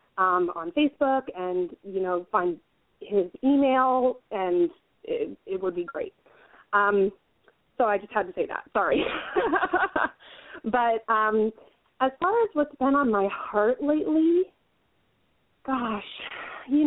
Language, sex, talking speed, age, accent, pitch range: English, female, 130 wpm, 30-49, American, 210-315 Hz